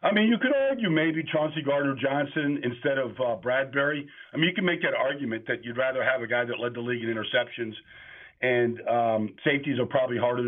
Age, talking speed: 50-69, 210 wpm